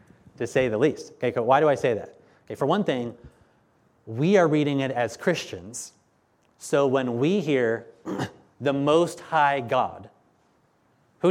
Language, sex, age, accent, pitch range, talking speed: English, male, 30-49, American, 125-155 Hz, 160 wpm